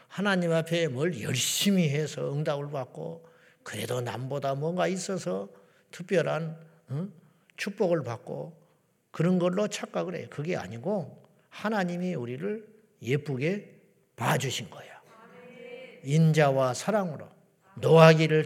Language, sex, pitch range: Korean, male, 145-195 Hz